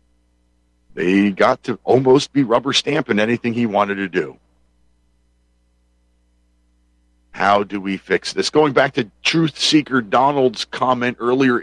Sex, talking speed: male, 125 wpm